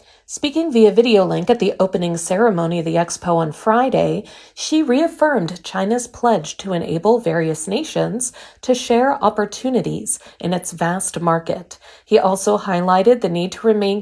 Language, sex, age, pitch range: Chinese, female, 40-59, 185-245 Hz